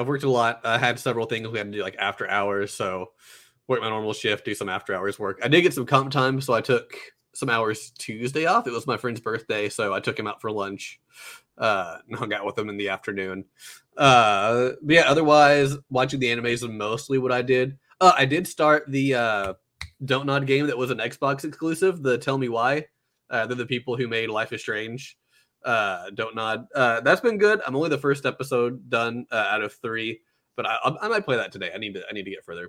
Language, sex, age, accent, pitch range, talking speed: English, male, 20-39, American, 115-135 Hz, 240 wpm